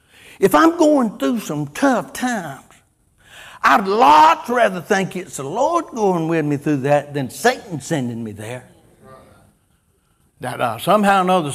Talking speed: 150 wpm